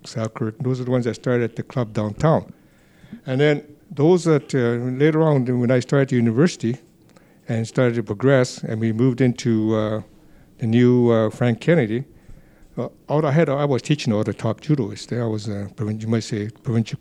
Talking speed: 200 wpm